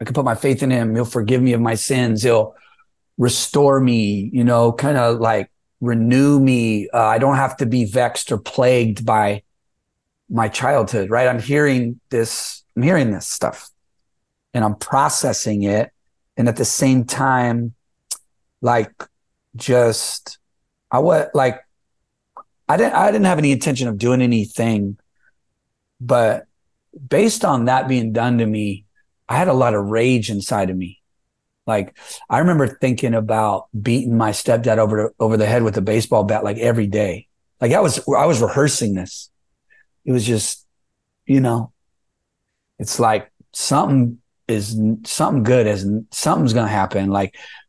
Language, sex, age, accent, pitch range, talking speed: English, male, 30-49, American, 105-125 Hz, 160 wpm